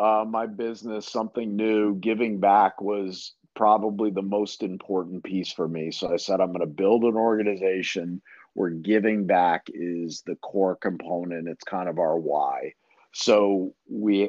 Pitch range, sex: 85-105 Hz, male